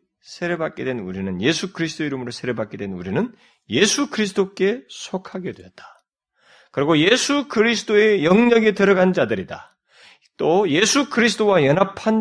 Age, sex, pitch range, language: 40-59, male, 130-210 Hz, Korean